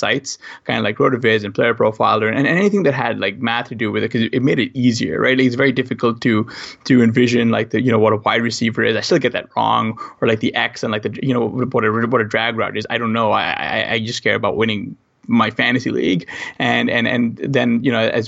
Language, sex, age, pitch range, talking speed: English, male, 20-39, 110-125 Hz, 275 wpm